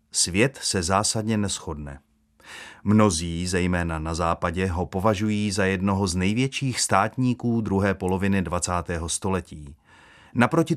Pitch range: 85-110 Hz